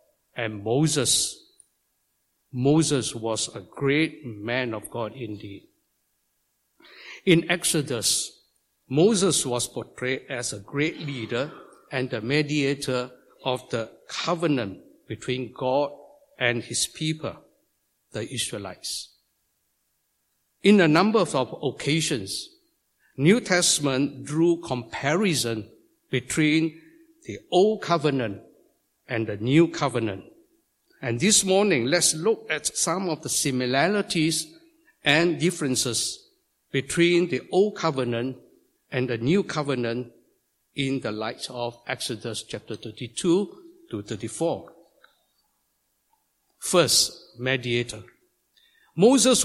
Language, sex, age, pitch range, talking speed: English, male, 60-79, 120-175 Hz, 100 wpm